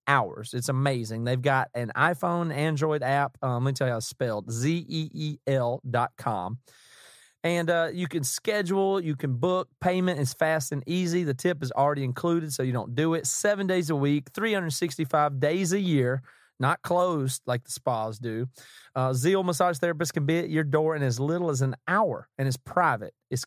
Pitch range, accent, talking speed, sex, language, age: 125-165 Hz, American, 190 wpm, male, English, 30-49